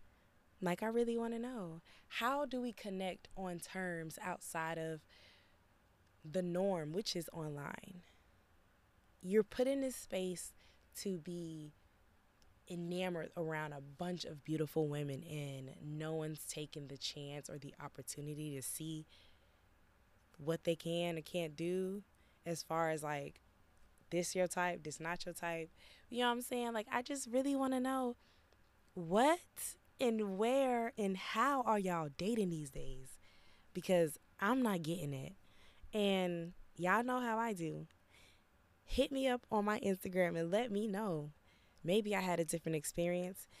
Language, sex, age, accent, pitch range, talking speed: English, female, 20-39, American, 145-200 Hz, 150 wpm